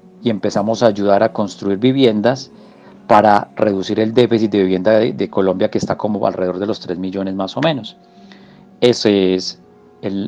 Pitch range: 95-120 Hz